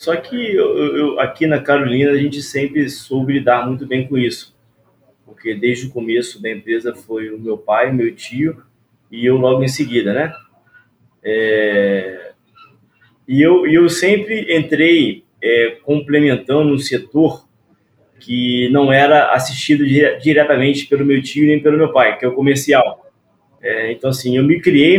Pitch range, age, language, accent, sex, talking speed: 125-145 Hz, 20-39, Portuguese, Brazilian, male, 160 wpm